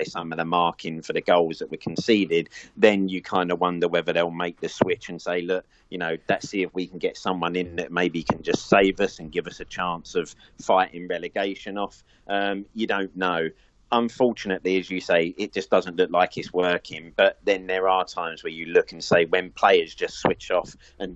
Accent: British